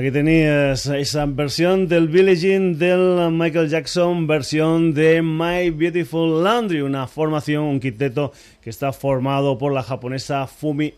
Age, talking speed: 30-49, 135 wpm